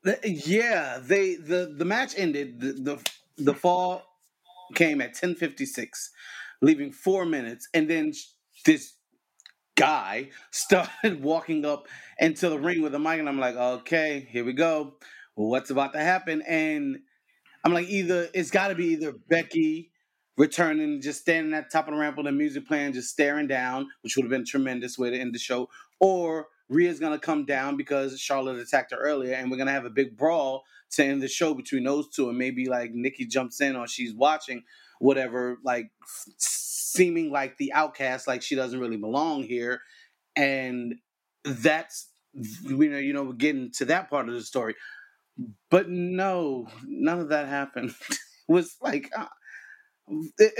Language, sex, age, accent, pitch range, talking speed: English, male, 30-49, American, 135-180 Hz, 175 wpm